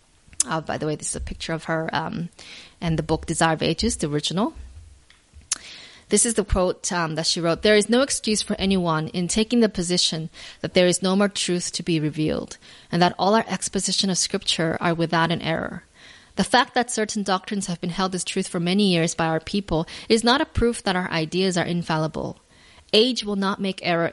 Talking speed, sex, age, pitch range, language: 215 wpm, female, 20-39, 170-210 Hz, English